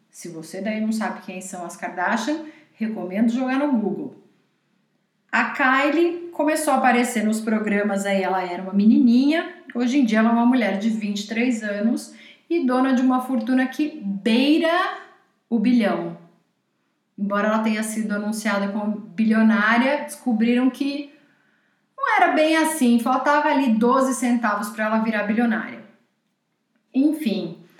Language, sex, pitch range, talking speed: Portuguese, female, 205-260 Hz, 140 wpm